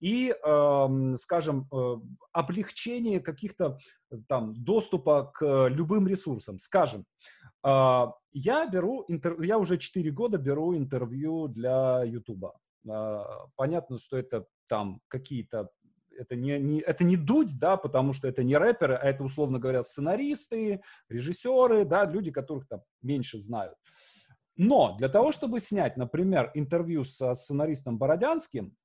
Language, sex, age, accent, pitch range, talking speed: Russian, male, 30-49, native, 130-190 Hz, 115 wpm